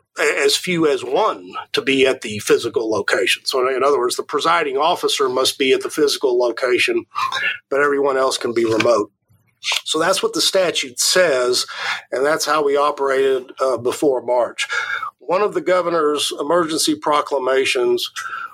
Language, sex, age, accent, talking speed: English, male, 50-69, American, 160 wpm